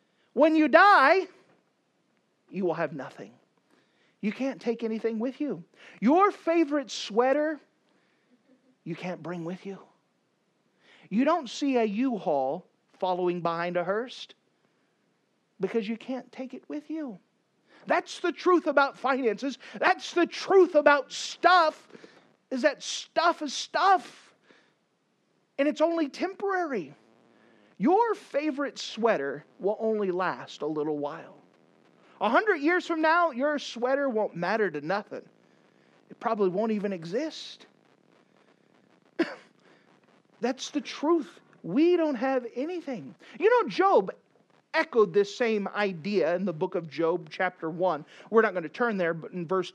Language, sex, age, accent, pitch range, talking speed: English, male, 40-59, American, 190-310 Hz, 135 wpm